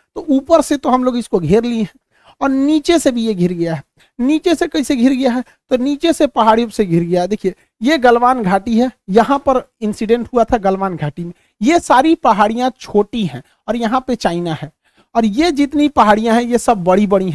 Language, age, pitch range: Hindi, 50-69, 205-255 Hz